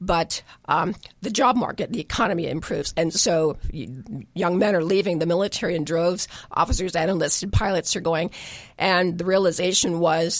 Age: 50-69